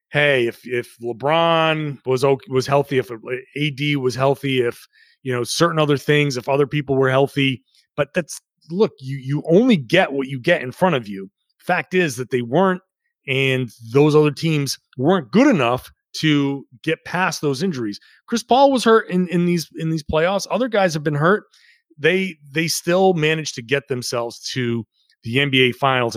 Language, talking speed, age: English, 180 wpm, 30-49